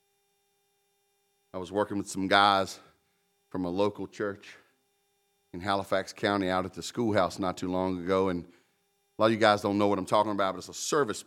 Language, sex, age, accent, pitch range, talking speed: English, male, 40-59, American, 95-135 Hz, 195 wpm